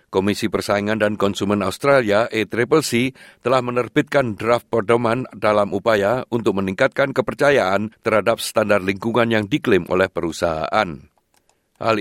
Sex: male